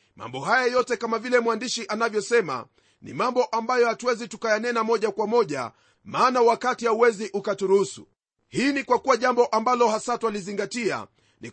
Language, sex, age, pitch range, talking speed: Swahili, male, 40-59, 205-240 Hz, 145 wpm